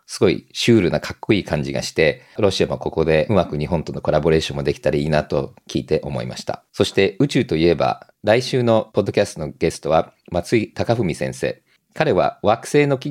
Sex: male